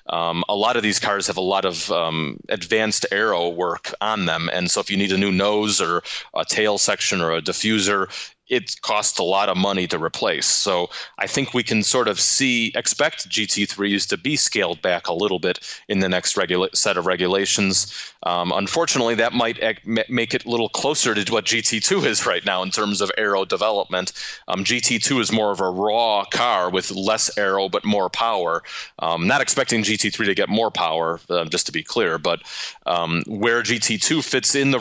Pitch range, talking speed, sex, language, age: 90-115 Hz, 205 wpm, male, English, 30-49